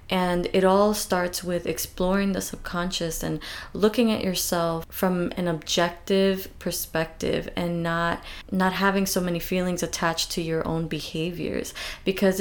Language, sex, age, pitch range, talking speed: English, female, 20-39, 170-195 Hz, 140 wpm